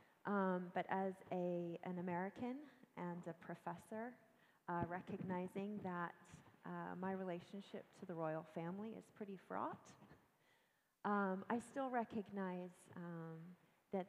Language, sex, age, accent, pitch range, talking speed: English, female, 30-49, American, 180-215 Hz, 120 wpm